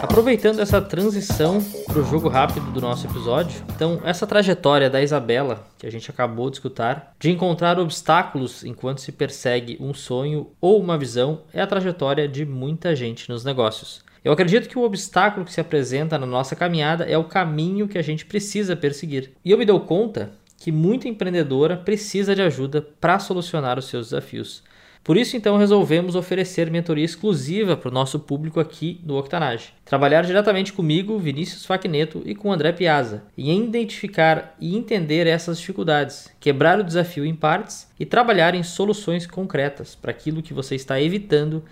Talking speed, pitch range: 175 wpm, 145-195 Hz